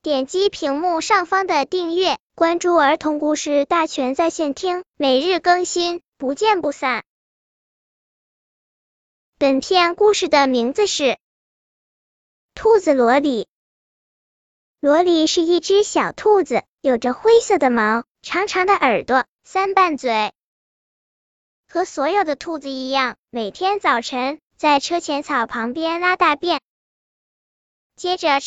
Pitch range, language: 275-365 Hz, Chinese